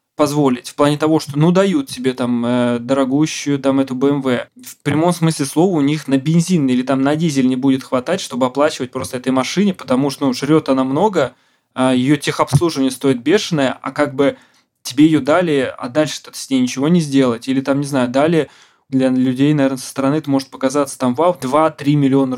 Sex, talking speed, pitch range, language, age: male, 195 wpm, 130-150 Hz, Russian, 20-39